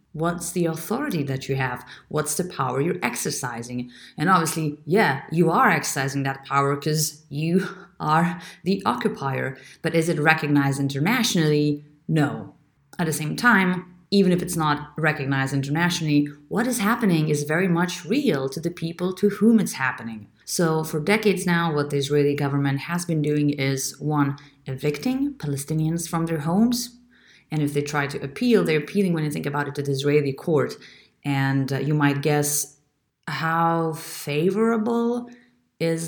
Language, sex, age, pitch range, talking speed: English, female, 30-49, 140-180 Hz, 160 wpm